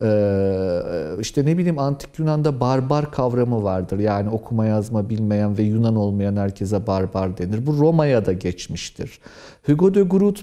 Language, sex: Turkish, male